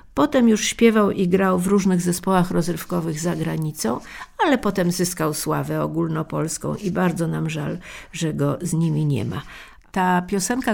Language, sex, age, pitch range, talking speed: Polish, female, 50-69, 175-220 Hz, 155 wpm